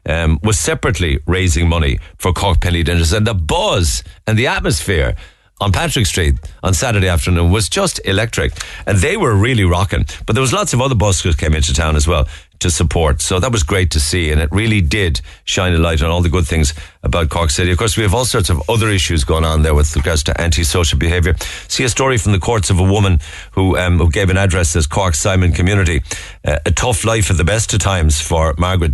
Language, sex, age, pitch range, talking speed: English, male, 50-69, 80-100 Hz, 230 wpm